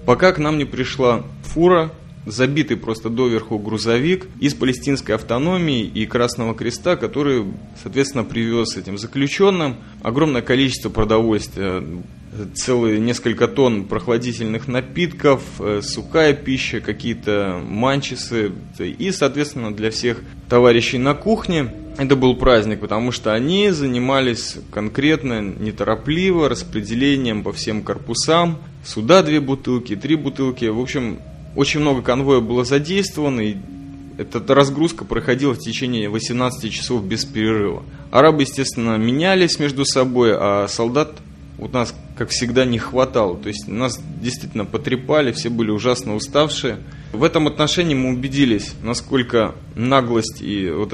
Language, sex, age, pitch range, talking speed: Russian, male, 20-39, 110-140 Hz, 125 wpm